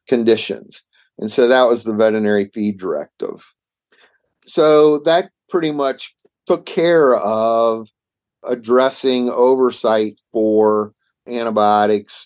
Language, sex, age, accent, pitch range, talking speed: English, male, 50-69, American, 105-120 Hz, 100 wpm